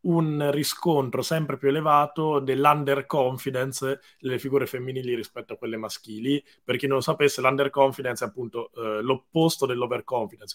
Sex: male